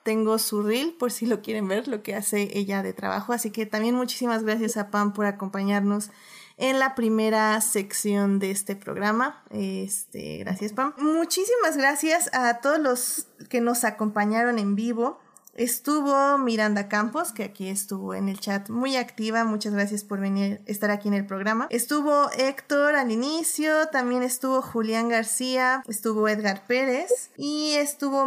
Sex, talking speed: female, 160 wpm